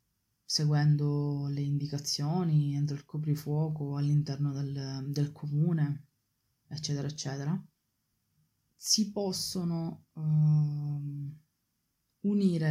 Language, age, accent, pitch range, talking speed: Italian, 20-39, native, 145-165 Hz, 70 wpm